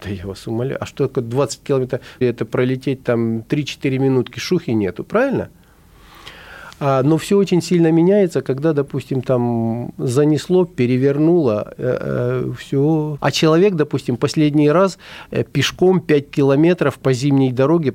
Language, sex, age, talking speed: Russian, male, 40-59, 135 wpm